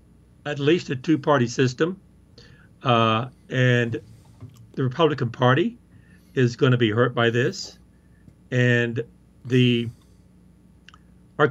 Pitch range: 115-160 Hz